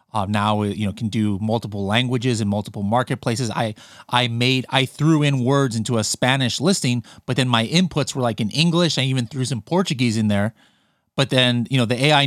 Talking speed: 210 wpm